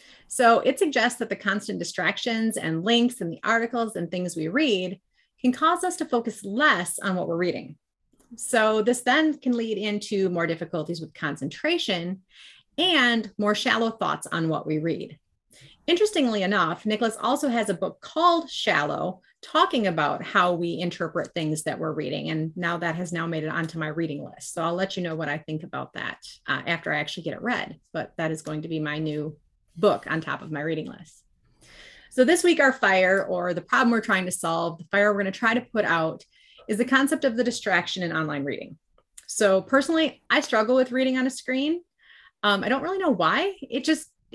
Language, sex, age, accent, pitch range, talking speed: English, female, 30-49, American, 170-255 Hz, 205 wpm